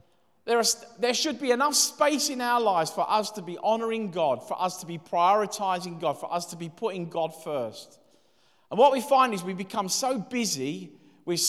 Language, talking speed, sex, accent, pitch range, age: English, 205 wpm, male, British, 165-220 Hz, 40-59